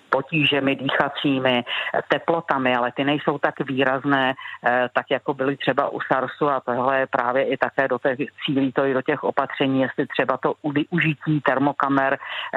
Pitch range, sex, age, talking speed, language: 125-145 Hz, female, 40-59, 155 wpm, Czech